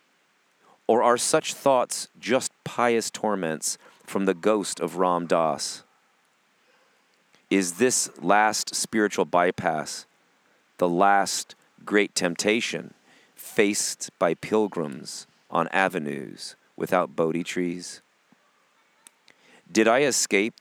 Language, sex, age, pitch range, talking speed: English, male, 40-59, 85-100 Hz, 95 wpm